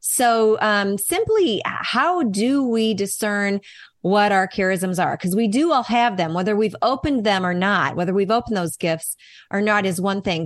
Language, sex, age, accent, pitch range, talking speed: English, female, 30-49, American, 185-235 Hz, 190 wpm